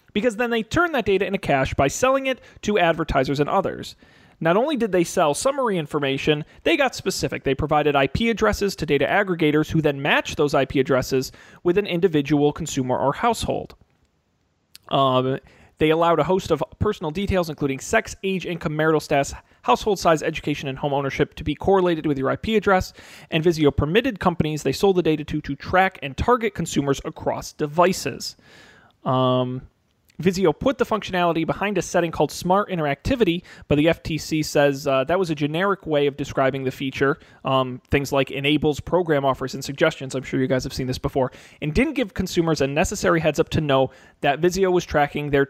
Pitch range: 135-180 Hz